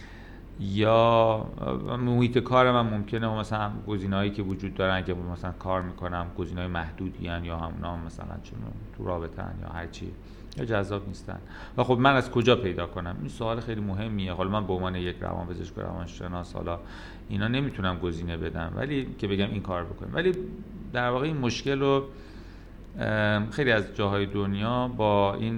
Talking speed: 170 wpm